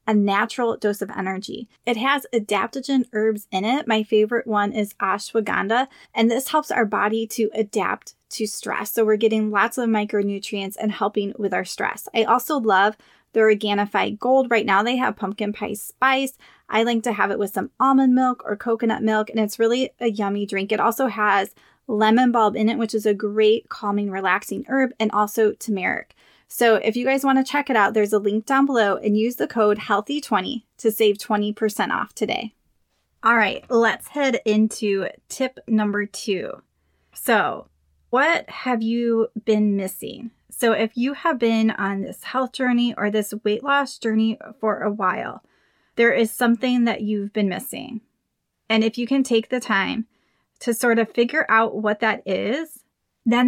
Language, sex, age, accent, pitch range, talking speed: English, female, 20-39, American, 210-240 Hz, 180 wpm